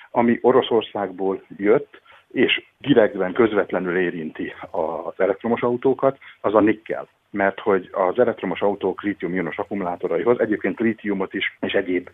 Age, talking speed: 60-79, 125 wpm